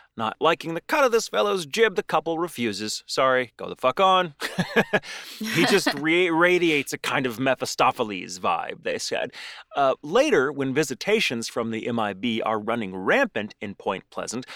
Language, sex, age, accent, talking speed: English, male, 30-49, American, 165 wpm